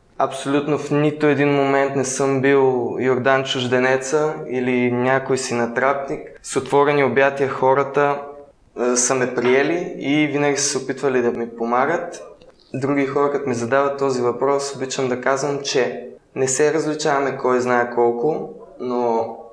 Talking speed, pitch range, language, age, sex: 145 wpm, 125-150 Hz, Bulgarian, 20-39, male